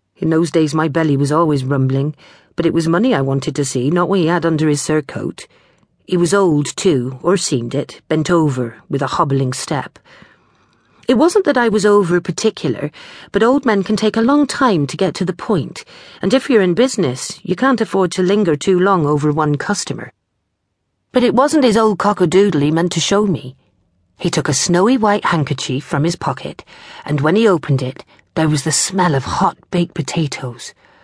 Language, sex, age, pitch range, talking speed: English, female, 40-59, 140-190 Hz, 205 wpm